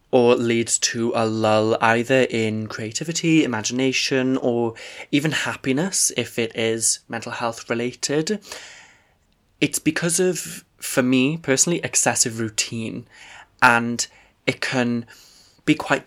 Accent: British